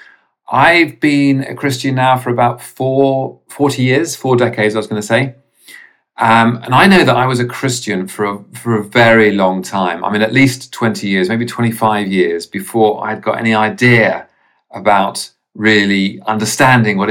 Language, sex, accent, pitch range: English, male, British, 100-125 Hz